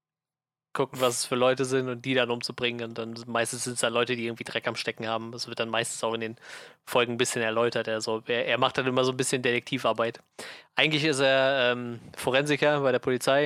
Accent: German